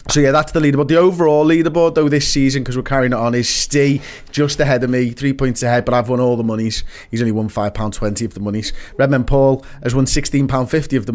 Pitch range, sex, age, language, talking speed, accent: 115-140 Hz, male, 30-49, English, 240 wpm, British